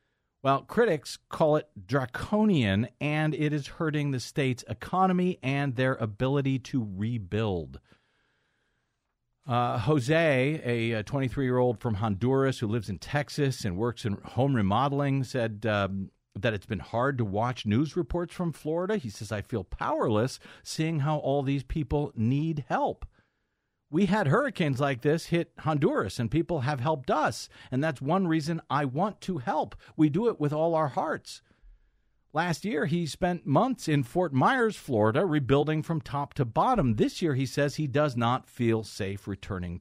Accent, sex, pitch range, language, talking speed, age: American, male, 115-155 Hz, English, 160 wpm, 50-69